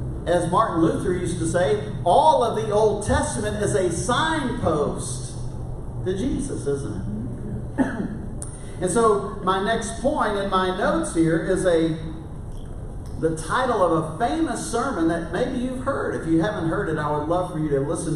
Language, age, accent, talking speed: English, 40-59, American, 170 wpm